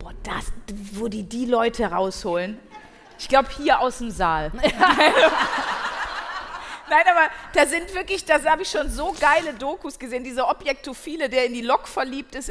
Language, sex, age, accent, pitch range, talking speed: German, female, 30-49, German, 255-320 Hz, 165 wpm